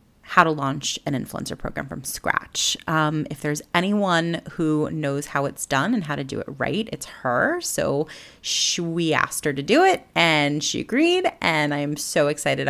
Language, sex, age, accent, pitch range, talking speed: English, female, 30-49, American, 150-195 Hz, 190 wpm